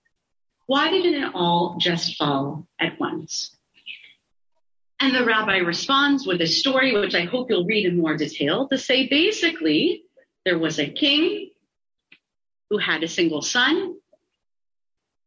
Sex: female